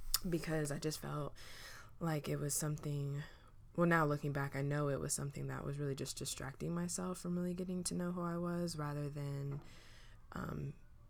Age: 20-39